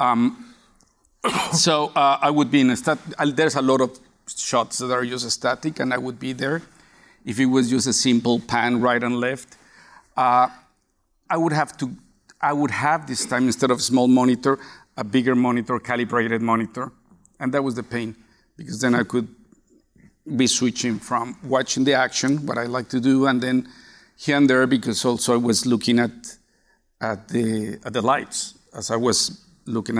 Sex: male